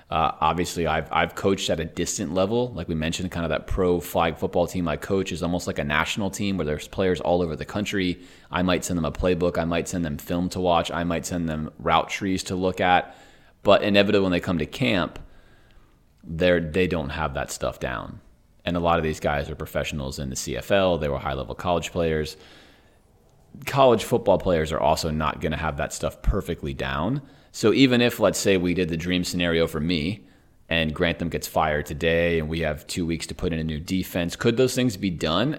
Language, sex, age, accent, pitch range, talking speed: English, male, 30-49, American, 80-95 Hz, 225 wpm